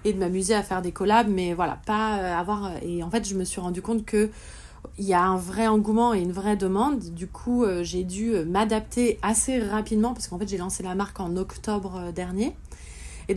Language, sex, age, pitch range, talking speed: French, female, 30-49, 180-215 Hz, 210 wpm